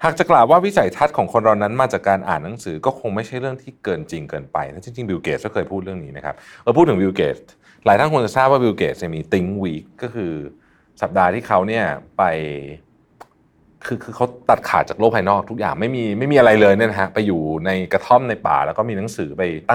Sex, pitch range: male, 95-130 Hz